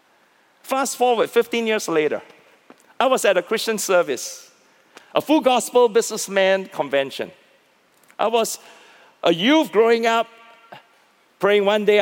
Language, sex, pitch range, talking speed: English, male, 215-310 Hz, 125 wpm